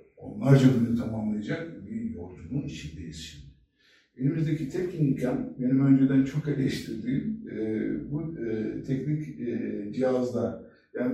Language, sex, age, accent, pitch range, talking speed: Turkish, male, 60-79, native, 95-135 Hz, 95 wpm